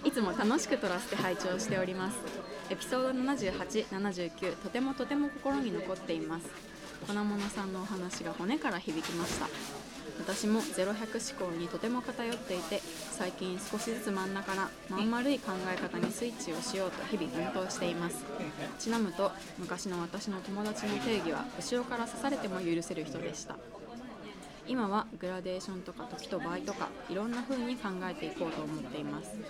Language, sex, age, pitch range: Japanese, female, 20-39, 185-230 Hz